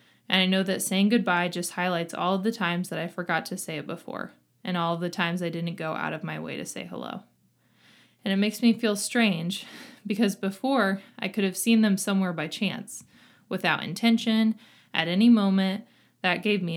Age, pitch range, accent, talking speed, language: 20-39, 175-210 Hz, American, 210 wpm, English